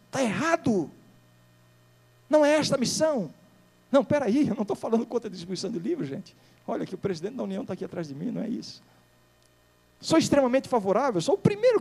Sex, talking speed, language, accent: male, 205 wpm, Portuguese, Brazilian